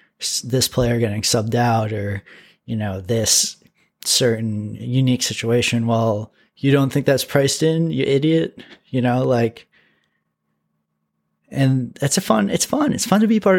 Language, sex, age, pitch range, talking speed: English, male, 20-39, 115-140 Hz, 155 wpm